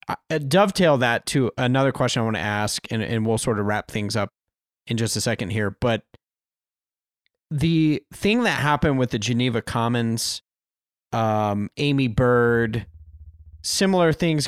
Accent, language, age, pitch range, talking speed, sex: American, English, 30-49, 110-150 Hz, 150 wpm, male